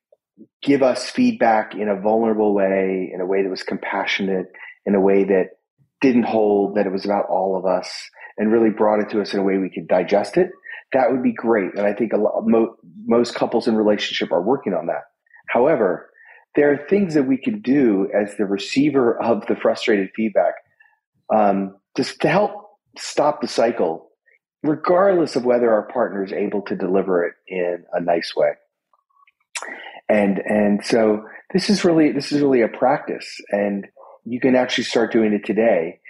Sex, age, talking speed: male, 30-49, 185 wpm